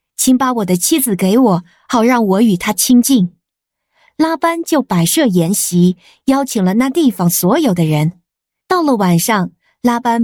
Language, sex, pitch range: Chinese, female, 180-275 Hz